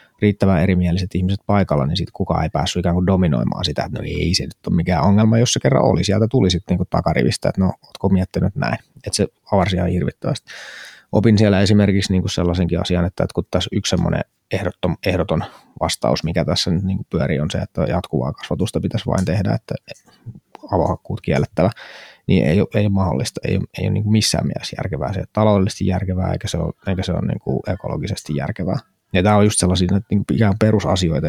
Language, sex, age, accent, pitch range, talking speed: Finnish, male, 20-39, native, 90-105 Hz, 190 wpm